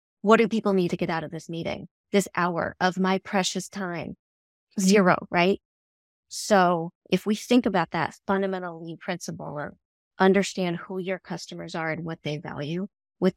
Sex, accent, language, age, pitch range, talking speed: female, American, English, 30-49, 155-190 Hz, 165 wpm